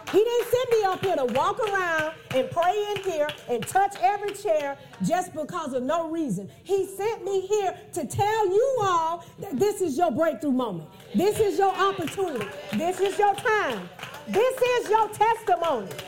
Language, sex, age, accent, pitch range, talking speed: English, female, 40-59, American, 255-400 Hz, 180 wpm